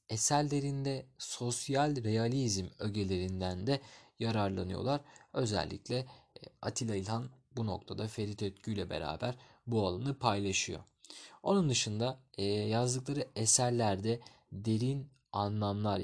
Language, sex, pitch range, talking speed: Turkish, male, 100-125 Hz, 90 wpm